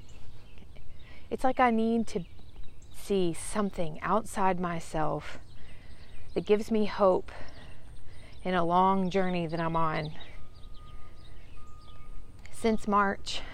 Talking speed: 95 wpm